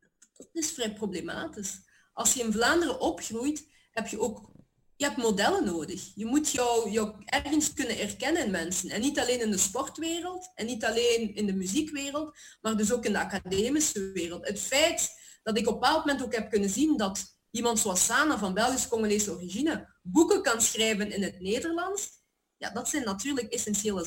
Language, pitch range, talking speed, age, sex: Dutch, 200-270 Hz, 185 wpm, 30-49, female